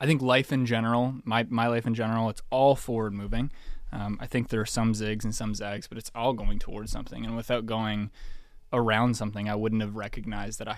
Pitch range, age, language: 105-115 Hz, 20-39, English